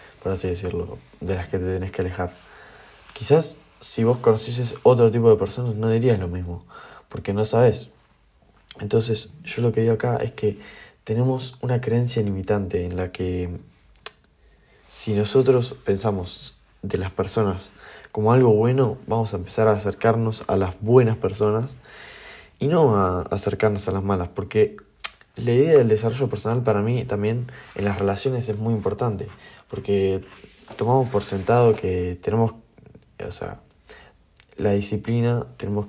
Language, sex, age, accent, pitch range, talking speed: Spanish, male, 20-39, Argentinian, 100-115 Hz, 150 wpm